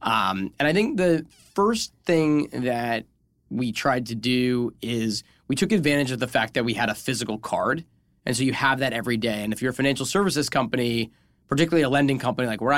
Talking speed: 210 wpm